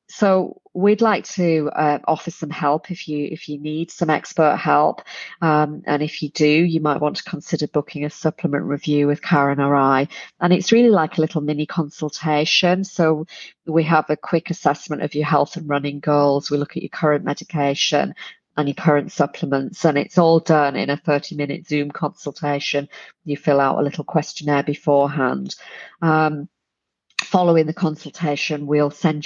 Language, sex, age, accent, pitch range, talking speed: English, female, 40-59, British, 145-165 Hz, 180 wpm